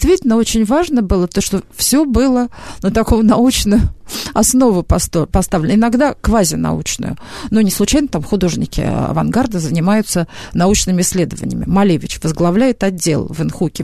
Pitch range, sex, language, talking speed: 195-255 Hz, female, Russian, 130 wpm